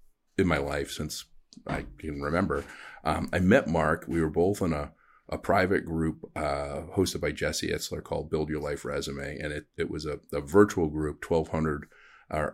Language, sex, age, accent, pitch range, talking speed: English, male, 40-59, American, 75-90 Hz, 180 wpm